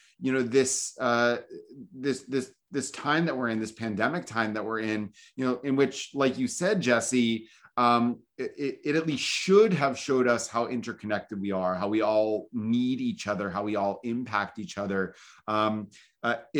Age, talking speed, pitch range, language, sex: 30-49, 190 wpm, 105-140 Hz, English, male